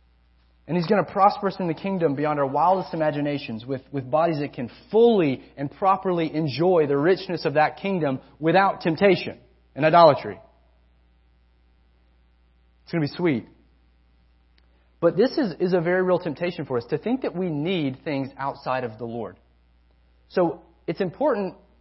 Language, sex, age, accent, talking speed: English, male, 30-49, American, 160 wpm